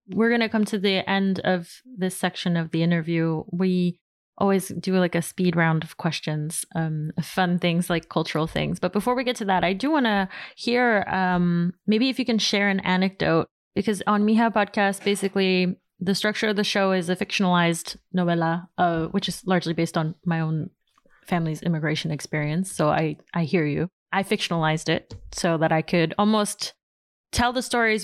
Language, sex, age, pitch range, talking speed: English, female, 20-39, 165-195 Hz, 190 wpm